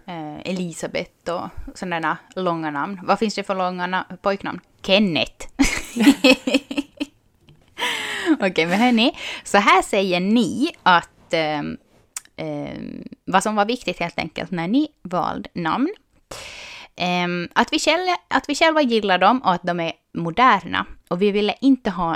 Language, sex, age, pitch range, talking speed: Swedish, female, 20-39, 175-250 Hz, 150 wpm